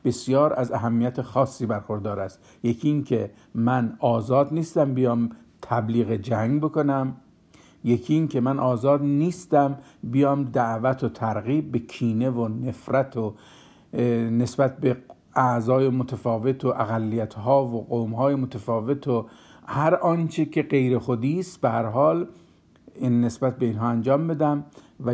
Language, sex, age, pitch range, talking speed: Persian, male, 50-69, 115-145 Hz, 125 wpm